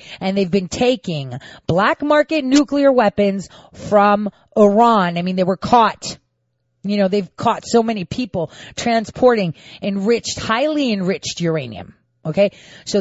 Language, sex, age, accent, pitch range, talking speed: English, female, 30-49, American, 185-245 Hz, 135 wpm